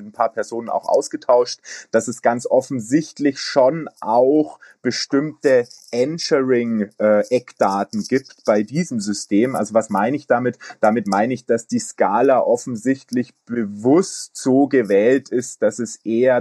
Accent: German